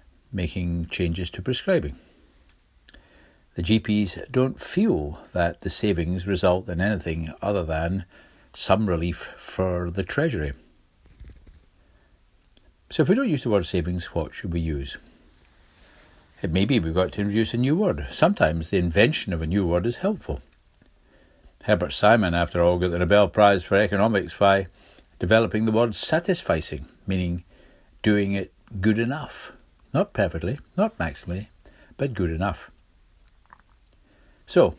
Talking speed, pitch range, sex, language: 140 wpm, 85-105 Hz, male, English